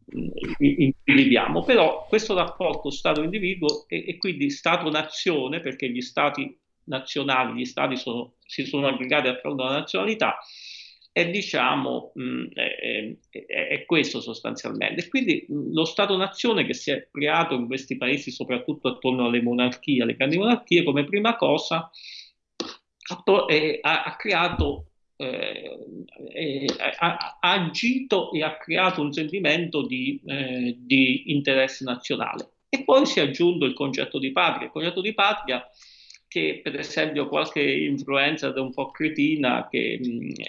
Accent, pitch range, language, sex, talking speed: native, 130-175 Hz, Italian, male, 145 wpm